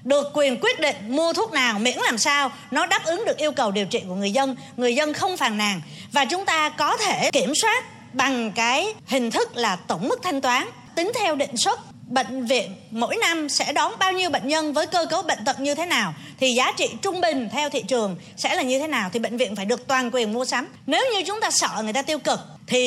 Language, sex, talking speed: Vietnamese, female, 250 wpm